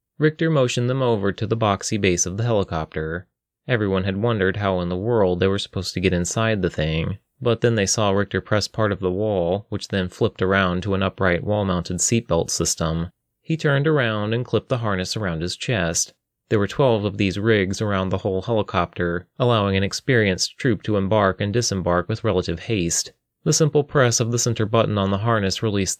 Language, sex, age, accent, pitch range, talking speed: English, male, 30-49, American, 95-115 Hz, 205 wpm